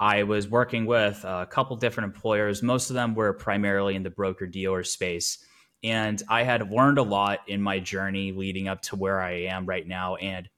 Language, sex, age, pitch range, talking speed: English, male, 10-29, 95-110 Hz, 205 wpm